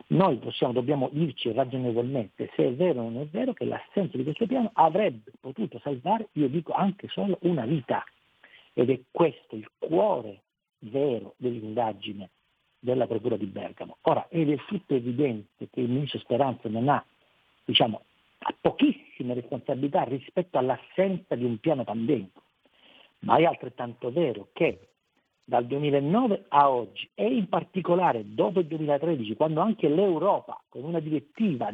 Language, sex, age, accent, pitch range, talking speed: Italian, male, 50-69, native, 125-175 Hz, 145 wpm